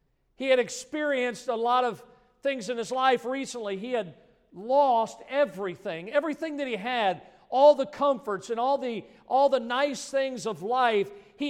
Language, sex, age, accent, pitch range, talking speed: English, male, 50-69, American, 220-270 Hz, 165 wpm